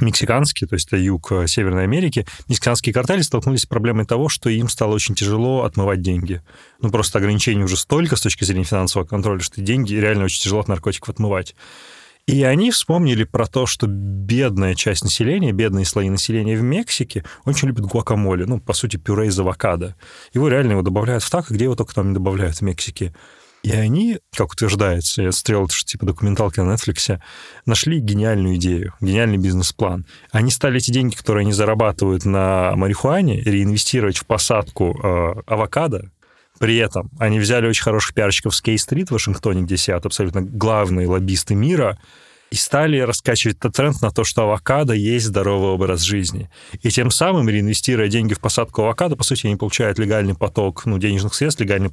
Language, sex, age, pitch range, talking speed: Russian, male, 30-49, 100-120 Hz, 180 wpm